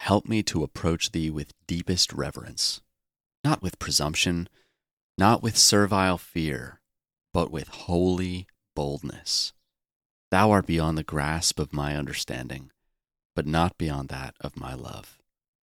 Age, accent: 30-49, American